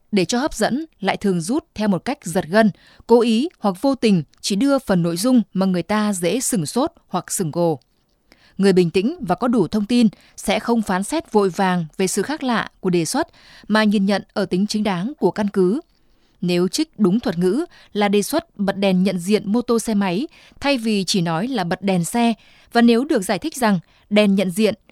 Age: 20-39